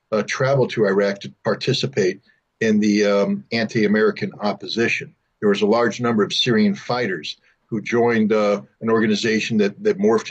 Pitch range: 110-140 Hz